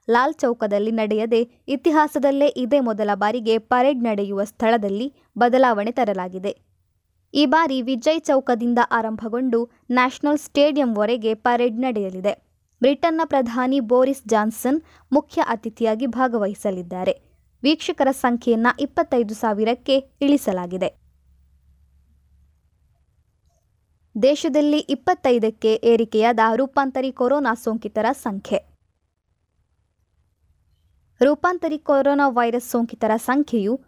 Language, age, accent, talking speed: Kannada, 20-39, native, 80 wpm